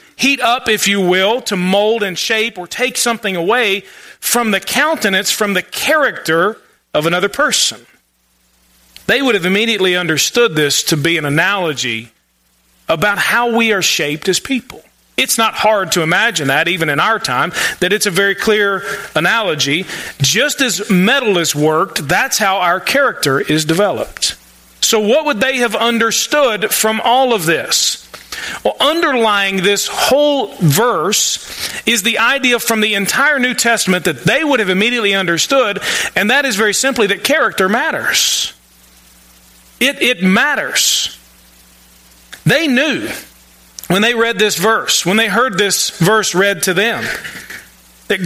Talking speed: 150 wpm